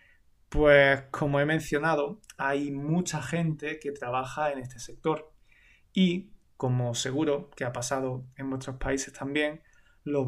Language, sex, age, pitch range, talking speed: Spanish, male, 20-39, 135-150 Hz, 135 wpm